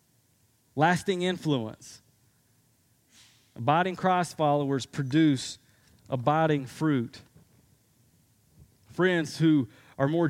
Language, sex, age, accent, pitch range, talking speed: English, male, 30-49, American, 125-185 Hz, 70 wpm